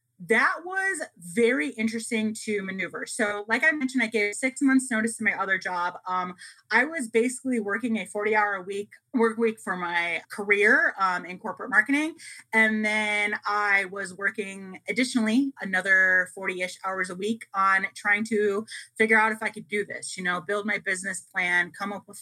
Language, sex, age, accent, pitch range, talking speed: English, female, 30-49, American, 195-235 Hz, 185 wpm